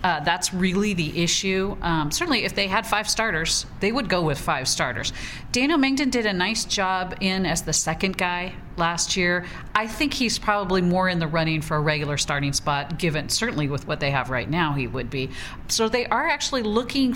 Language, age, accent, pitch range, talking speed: English, 40-59, American, 160-200 Hz, 210 wpm